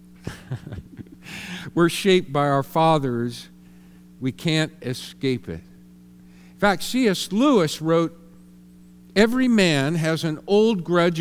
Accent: American